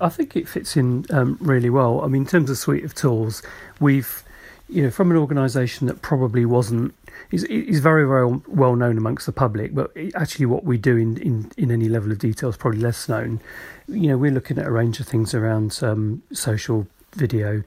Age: 40-59